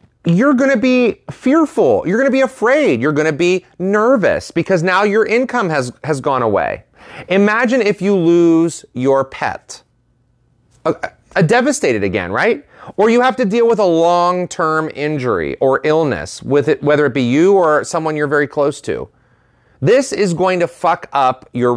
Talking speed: 175 wpm